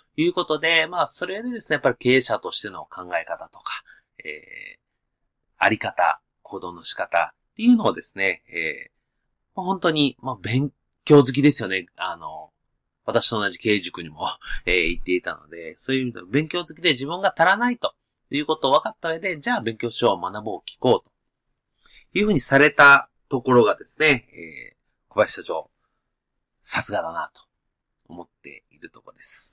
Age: 30-49